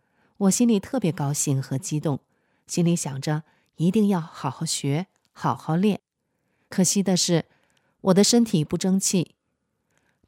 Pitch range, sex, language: 150-200 Hz, female, Chinese